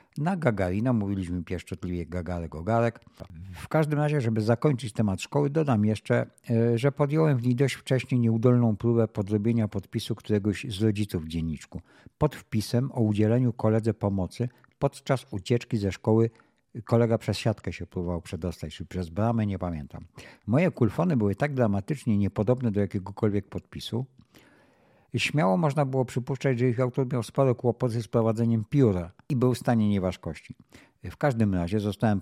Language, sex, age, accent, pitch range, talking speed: Polish, male, 50-69, native, 100-125 Hz, 155 wpm